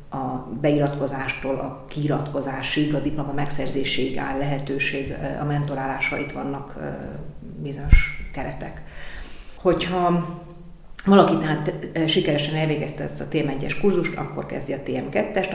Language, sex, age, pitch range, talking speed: Hungarian, female, 40-59, 135-155 Hz, 105 wpm